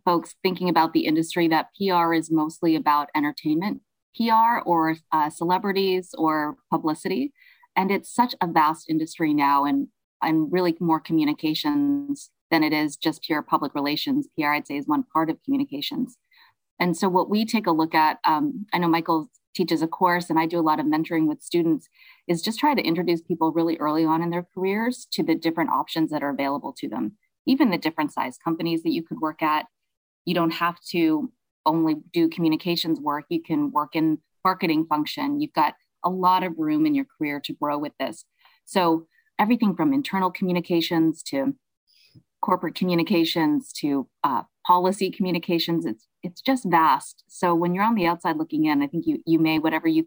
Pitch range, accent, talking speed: 160-230 Hz, American, 185 wpm